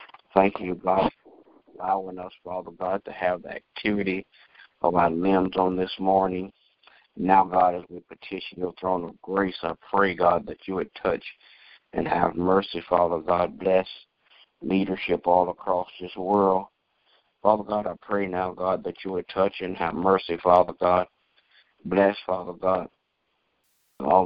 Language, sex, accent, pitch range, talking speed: English, male, American, 85-95 Hz, 160 wpm